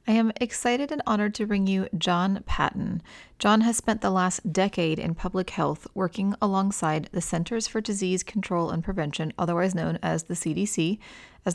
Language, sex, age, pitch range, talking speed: English, female, 30-49, 165-205 Hz, 175 wpm